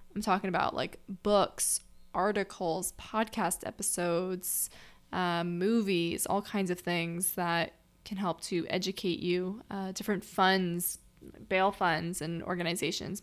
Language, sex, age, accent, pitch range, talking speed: English, female, 20-39, American, 175-205 Hz, 120 wpm